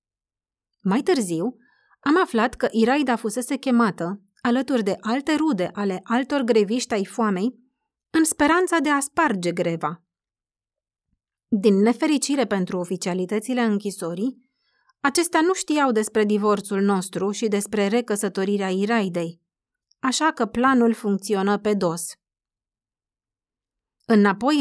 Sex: female